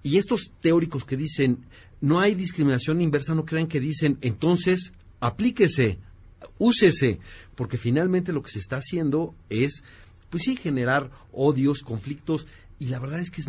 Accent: Mexican